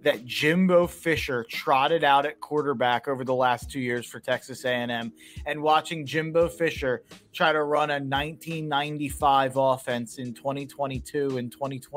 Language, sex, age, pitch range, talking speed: English, male, 30-49, 130-165 Hz, 135 wpm